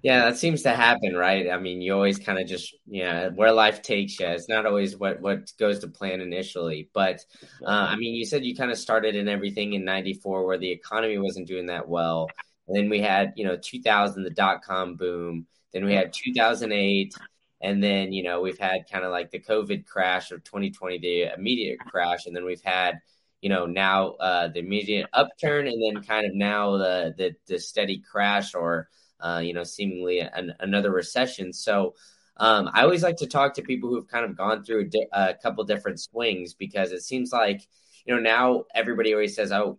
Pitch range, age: 90-110 Hz, 10-29